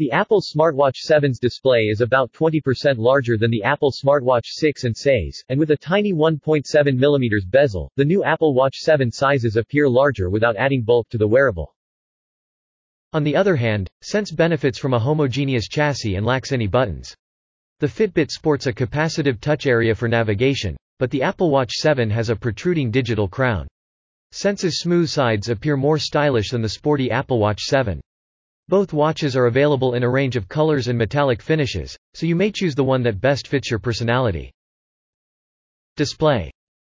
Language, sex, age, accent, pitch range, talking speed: English, male, 40-59, American, 115-150 Hz, 170 wpm